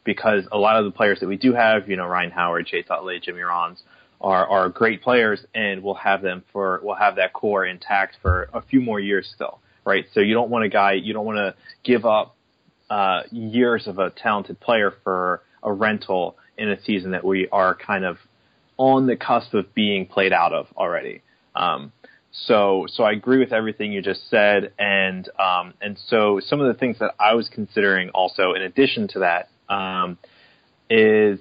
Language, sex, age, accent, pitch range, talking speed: English, male, 20-39, American, 95-120 Hz, 205 wpm